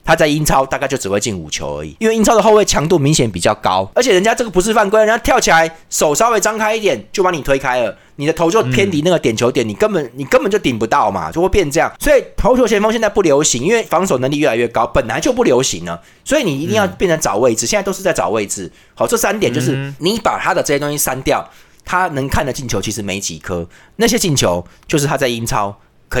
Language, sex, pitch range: Chinese, male, 125-195 Hz